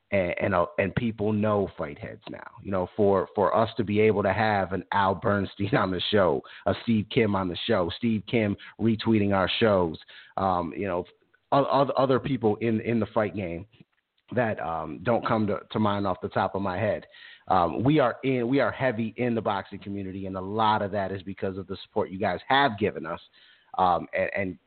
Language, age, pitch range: English, 30-49, 100-125 Hz